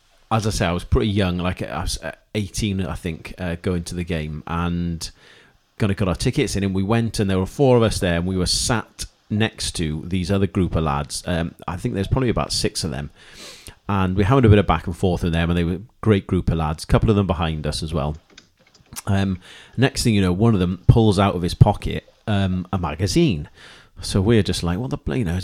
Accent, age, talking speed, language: British, 30-49, 250 wpm, English